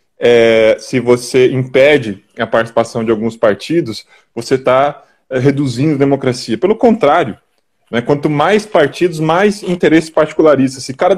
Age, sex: 20-39, male